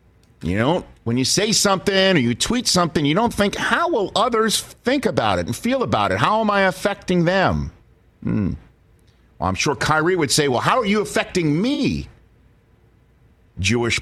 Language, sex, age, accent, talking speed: English, male, 50-69, American, 180 wpm